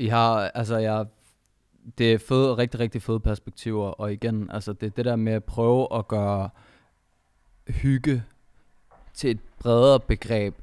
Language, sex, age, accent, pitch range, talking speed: Danish, male, 20-39, native, 95-115 Hz, 150 wpm